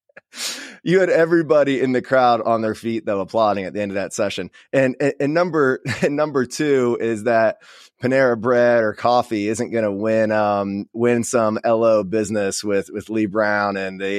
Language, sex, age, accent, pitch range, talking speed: English, male, 20-39, American, 100-120 Hz, 190 wpm